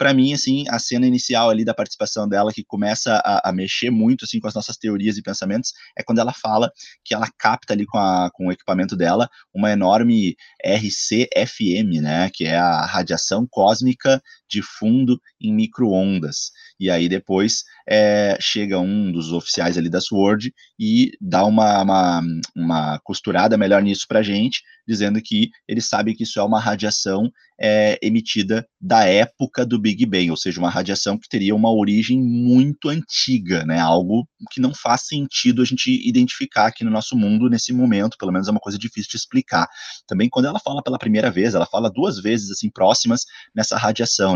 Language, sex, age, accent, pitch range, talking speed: Portuguese, male, 20-39, Brazilian, 100-130 Hz, 185 wpm